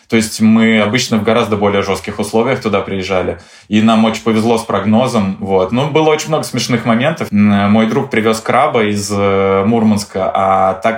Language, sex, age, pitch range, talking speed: Russian, male, 20-39, 105-120 Hz, 175 wpm